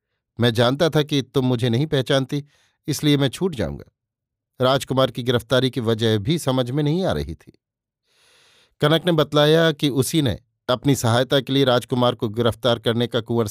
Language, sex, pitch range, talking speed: Hindi, male, 115-140 Hz, 180 wpm